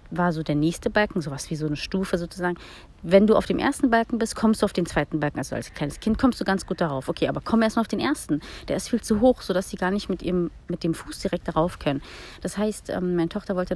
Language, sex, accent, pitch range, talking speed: German, female, German, 165-210 Hz, 265 wpm